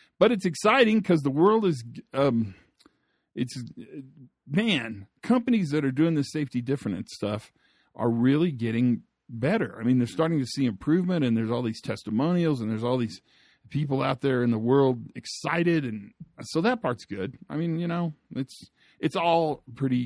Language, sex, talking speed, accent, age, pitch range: English, male, 175 wpm, American, 50-69, 115-150 Hz